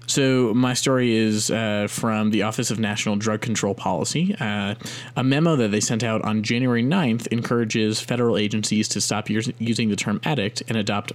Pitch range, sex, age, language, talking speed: 110-130 Hz, male, 20-39, English, 185 wpm